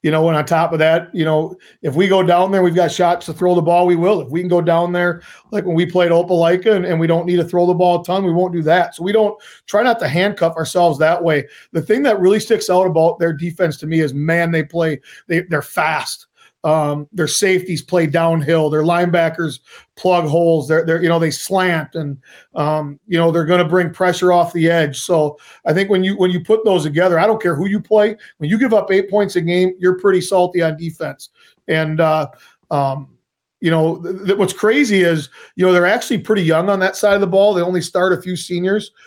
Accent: American